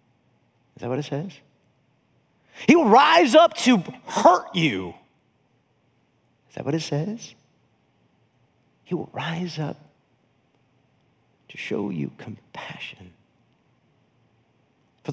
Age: 50-69